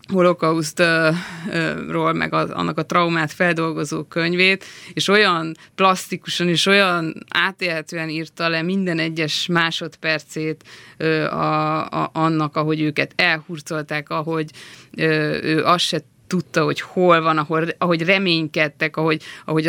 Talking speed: 115 wpm